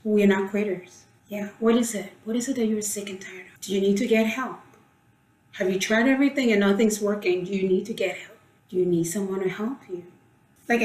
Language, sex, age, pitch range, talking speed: English, female, 30-49, 190-225 Hz, 250 wpm